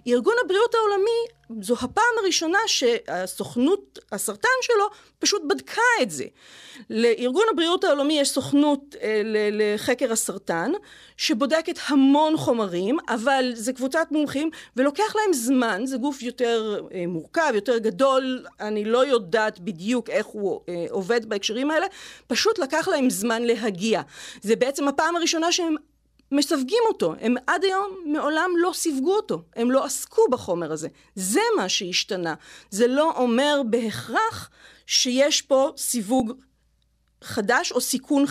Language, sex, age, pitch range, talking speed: Hebrew, female, 40-59, 230-330 Hz, 135 wpm